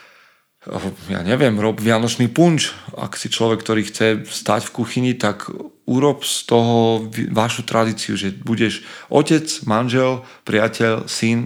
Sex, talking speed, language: male, 130 wpm, Slovak